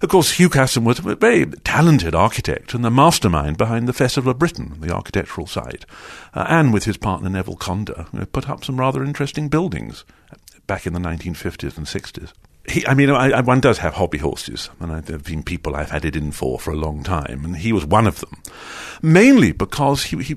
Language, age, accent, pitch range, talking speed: English, 50-69, British, 85-120 Hz, 220 wpm